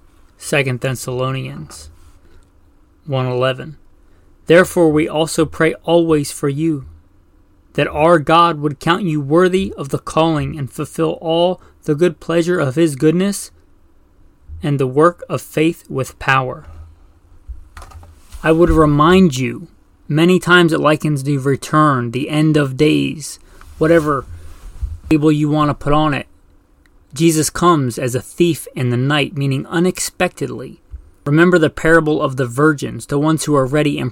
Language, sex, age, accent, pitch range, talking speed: English, male, 30-49, American, 100-155 Hz, 140 wpm